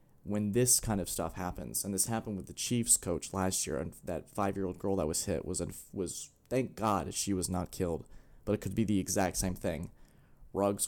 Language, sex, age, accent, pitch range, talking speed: English, male, 20-39, American, 90-110 Hz, 215 wpm